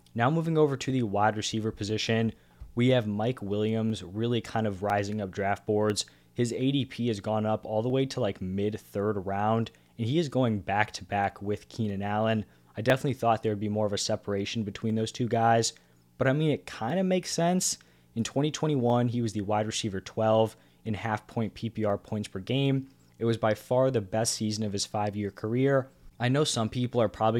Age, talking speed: 20-39, 210 wpm